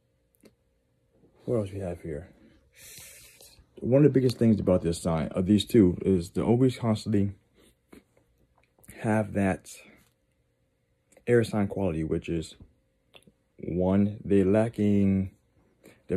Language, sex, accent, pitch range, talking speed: English, male, American, 85-110 Hz, 115 wpm